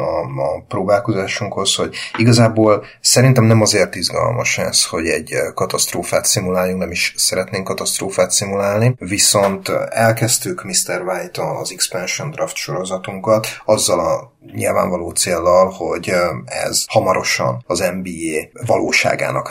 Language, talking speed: Hungarian, 115 wpm